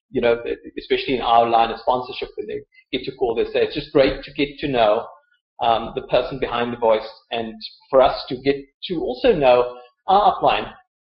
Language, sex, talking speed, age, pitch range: English, male, 205 wpm, 40-59, 135-190 Hz